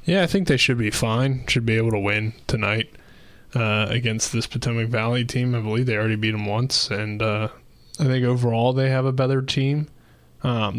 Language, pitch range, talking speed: English, 110-125 Hz, 205 wpm